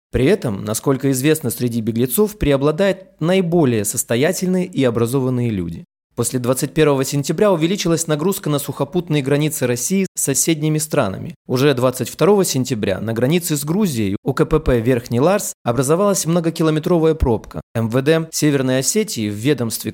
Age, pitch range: 20-39, 120-165 Hz